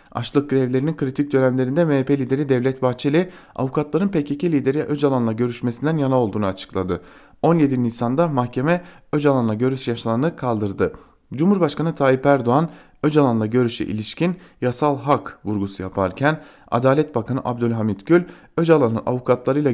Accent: Turkish